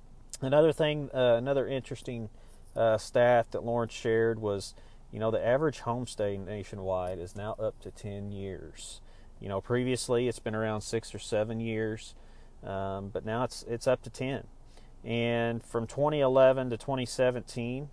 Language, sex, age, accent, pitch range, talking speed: English, male, 40-59, American, 105-125 Hz, 155 wpm